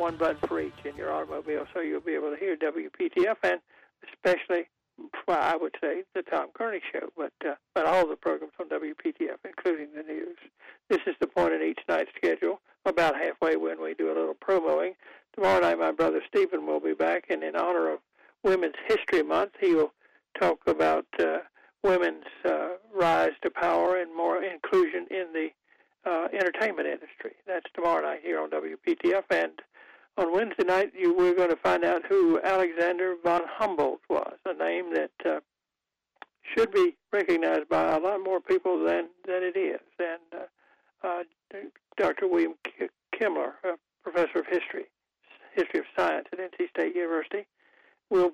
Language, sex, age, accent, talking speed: English, male, 60-79, American, 170 wpm